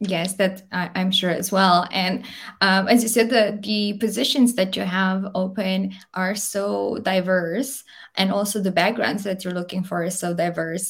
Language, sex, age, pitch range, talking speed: Romanian, female, 20-39, 185-215 Hz, 180 wpm